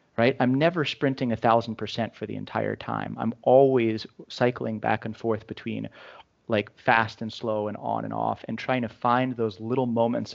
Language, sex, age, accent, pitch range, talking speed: English, male, 30-49, American, 110-125 Hz, 190 wpm